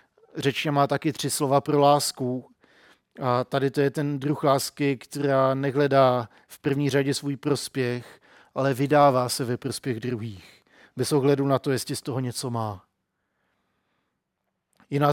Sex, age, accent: male, 40-59, native